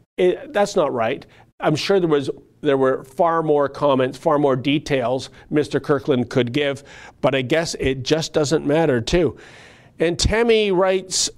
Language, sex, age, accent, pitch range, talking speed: English, male, 40-59, American, 135-170 Hz, 165 wpm